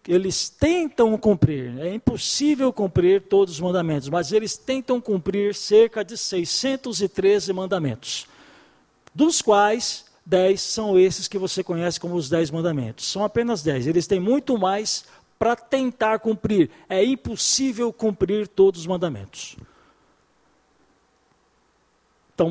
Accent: Brazilian